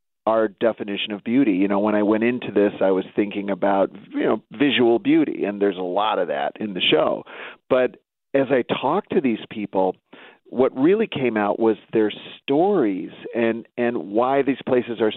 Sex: male